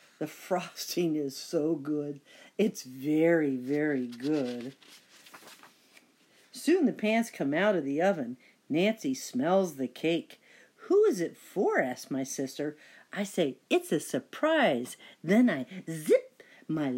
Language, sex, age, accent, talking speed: English, female, 50-69, American, 130 wpm